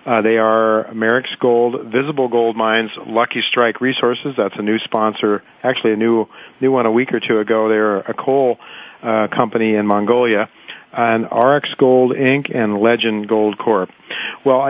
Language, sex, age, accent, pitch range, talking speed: English, male, 50-69, American, 110-125 Hz, 165 wpm